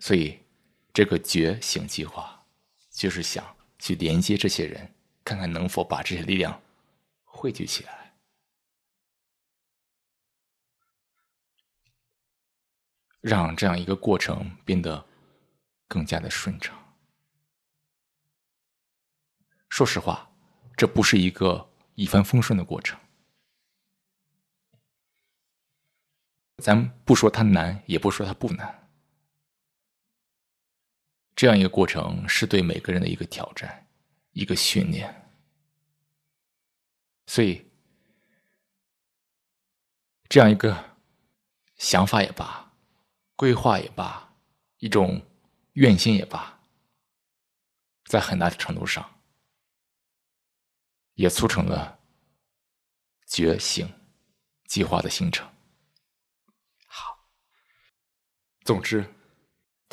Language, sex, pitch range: Chinese, male, 100-160 Hz